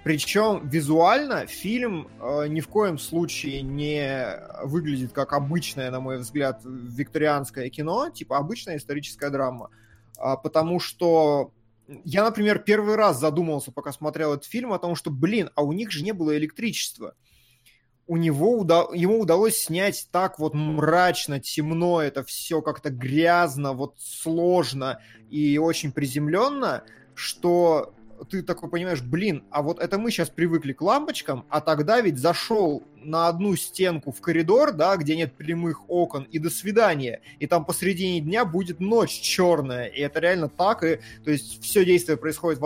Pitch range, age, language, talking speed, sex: 140-175 Hz, 20-39, Russian, 155 wpm, male